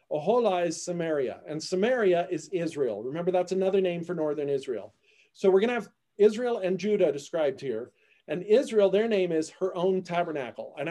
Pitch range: 165-205 Hz